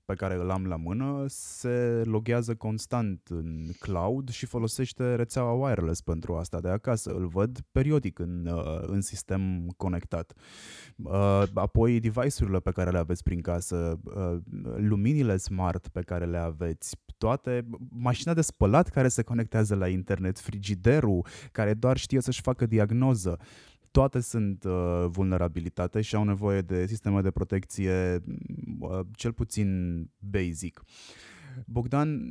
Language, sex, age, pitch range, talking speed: Romanian, male, 20-39, 90-120 Hz, 130 wpm